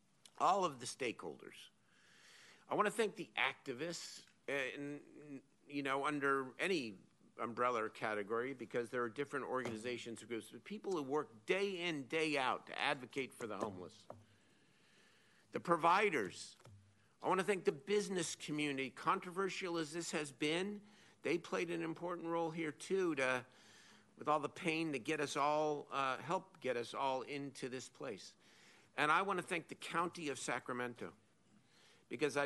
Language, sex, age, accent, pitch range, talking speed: English, male, 50-69, American, 125-165 Hz, 160 wpm